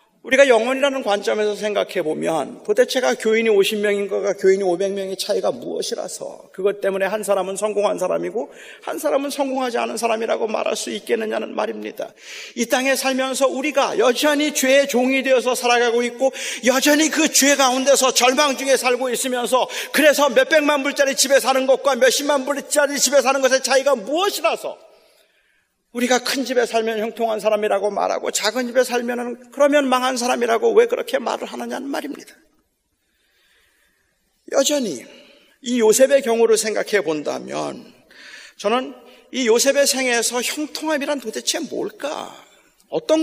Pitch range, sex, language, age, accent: 220-280 Hz, male, Korean, 40-59, native